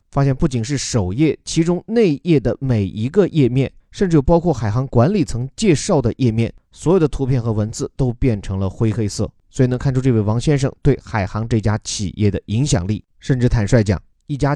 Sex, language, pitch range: male, Chinese, 110-140 Hz